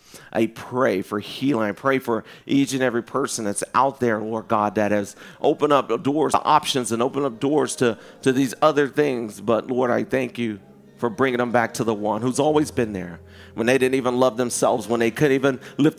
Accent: American